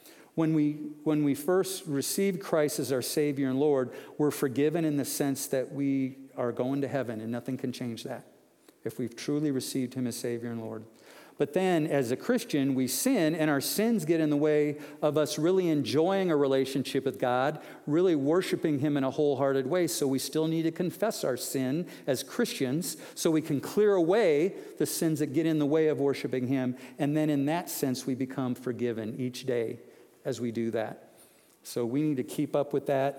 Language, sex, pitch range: English, male, 130-155 Hz